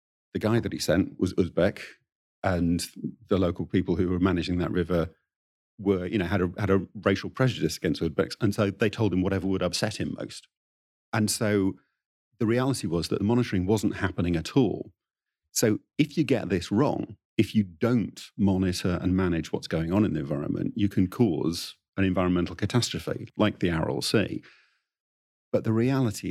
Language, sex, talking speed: English, male, 180 wpm